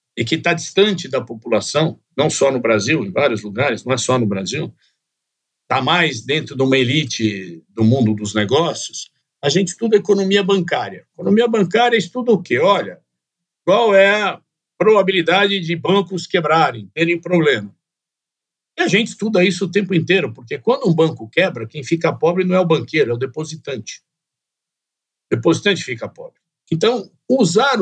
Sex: male